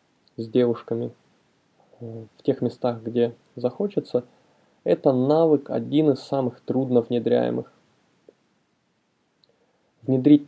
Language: Russian